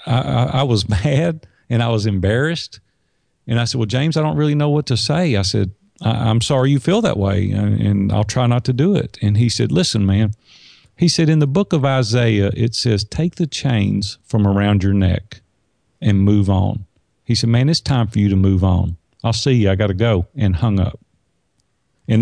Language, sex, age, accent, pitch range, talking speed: English, male, 50-69, American, 105-135 Hz, 220 wpm